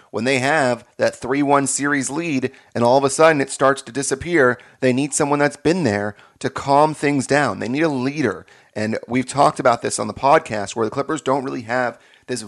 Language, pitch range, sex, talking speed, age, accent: English, 105-130 Hz, male, 215 wpm, 30-49, American